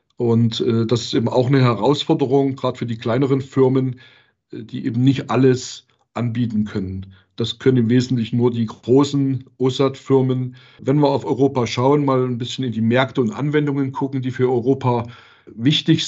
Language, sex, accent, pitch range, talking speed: German, male, German, 120-140 Hz, 165 wpm